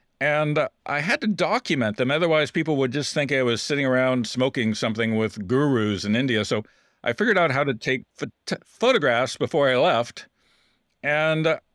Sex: male